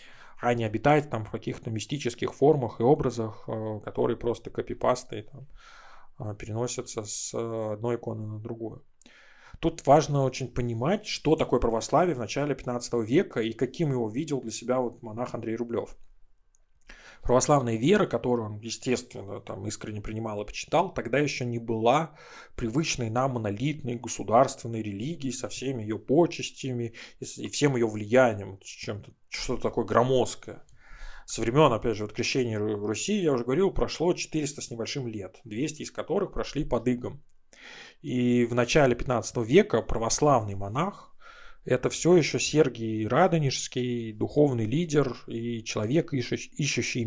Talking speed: 140 wpm